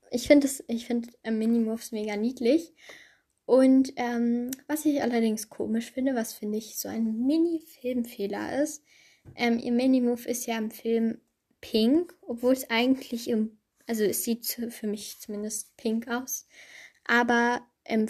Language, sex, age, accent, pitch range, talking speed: German, female, 10-29, German, 215-260 Hz, 145 wpm